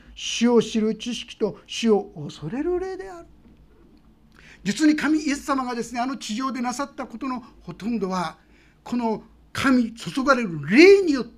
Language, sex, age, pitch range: Japanese, male, 50-69, 180-260 Hz